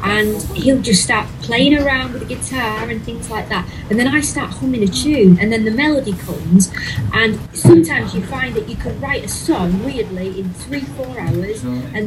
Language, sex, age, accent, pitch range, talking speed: English, female, 30-49, British, 180-245 Hz, 205 wpm